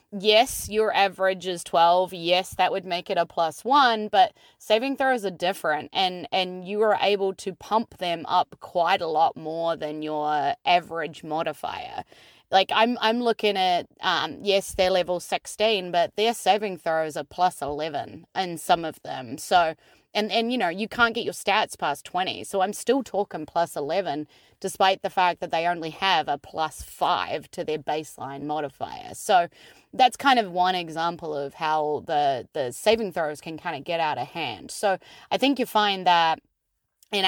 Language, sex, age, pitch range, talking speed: English, female, 20-39, 160-210 Hz, 185 wpm